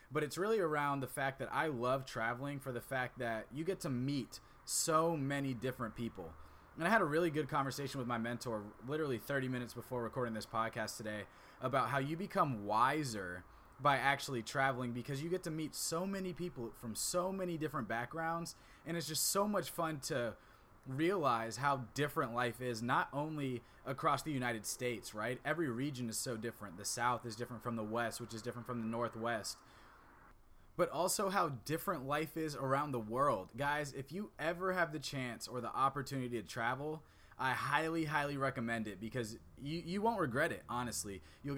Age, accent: 20-39, American